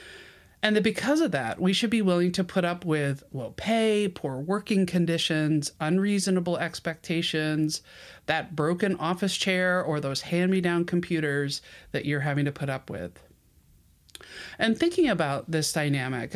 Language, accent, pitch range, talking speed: English, American, 150-185 Hz, 145 wpm